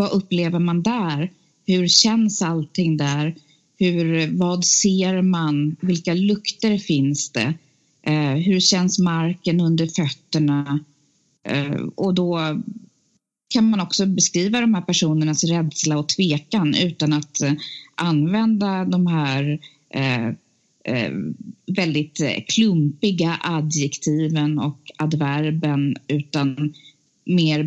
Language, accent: Swedish, native